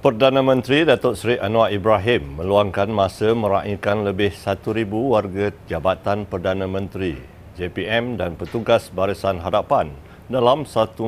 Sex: male